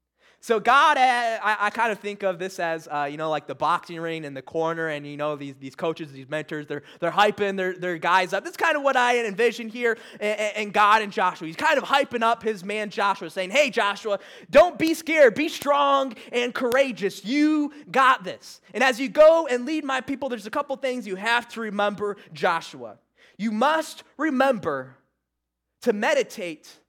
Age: 20-39